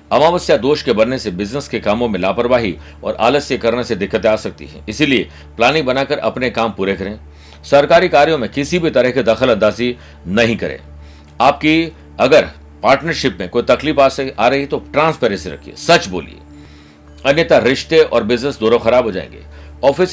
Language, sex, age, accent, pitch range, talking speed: Hindi, male, 60-79, native, 85-135 Hz, 85 wpm